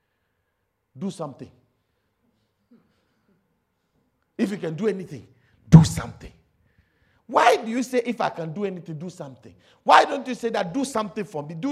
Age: 50-69